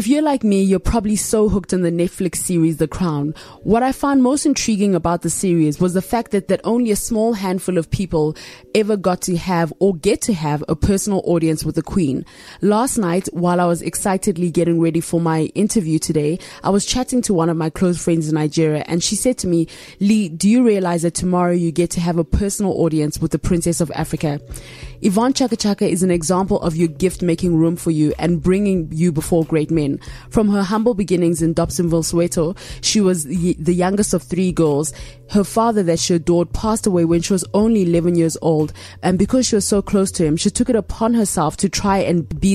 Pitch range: 165-200 Hz